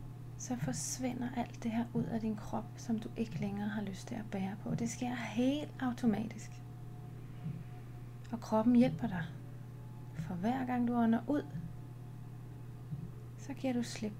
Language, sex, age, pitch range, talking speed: Danish, female, 30-49, 120-145 Hz, 155 wpm